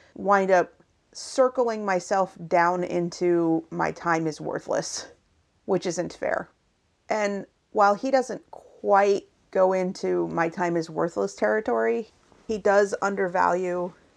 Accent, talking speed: American, 120 wpm